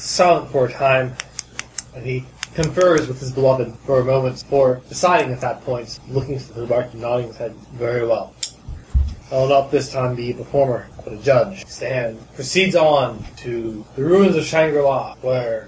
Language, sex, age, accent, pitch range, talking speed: English, male, 20-39, American, 125-155 Hz, 185 wpm